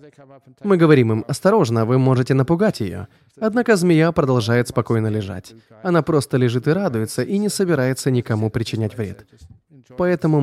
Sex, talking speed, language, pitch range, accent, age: male, 145 wpm, Russian, 110-160 Hz, native, 20-39